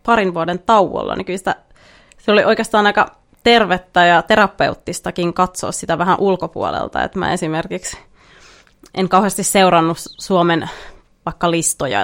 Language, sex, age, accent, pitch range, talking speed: Finnish, female, 20-39, native, 170-200 Hz, 130 wpm